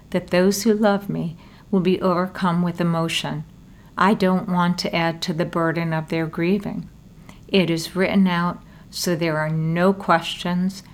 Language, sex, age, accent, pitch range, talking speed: English, female, 50-69, American, 165-185 Hz, 165 wpm